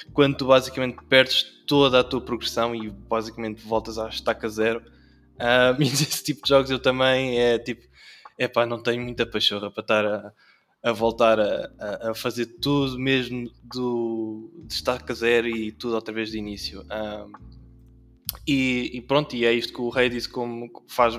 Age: 20-39